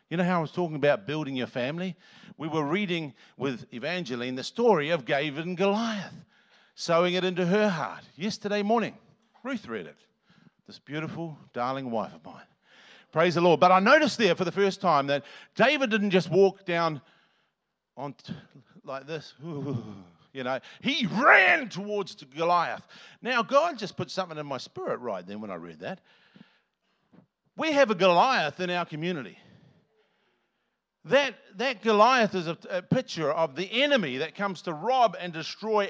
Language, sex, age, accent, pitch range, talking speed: English, male, 50-69, Australian, 165-220 Hz, 170 wpm